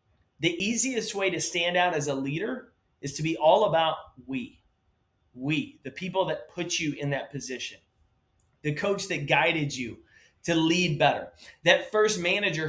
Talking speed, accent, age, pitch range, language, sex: 165 wpm, American, 30-49, 140-180 Hz, English, male